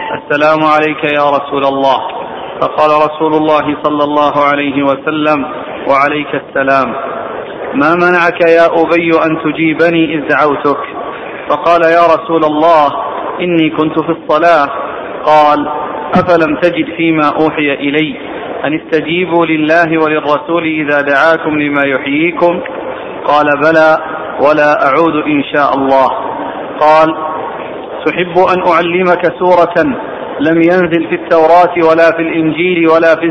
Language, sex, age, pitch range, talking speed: Arabic, male, 40-59, 150-170 Hz, 115 wpm